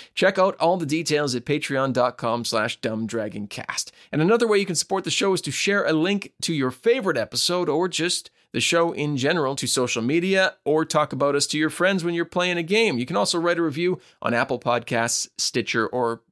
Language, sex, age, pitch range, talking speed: English, male, 30-49, 120-170 Hz, 215 wpm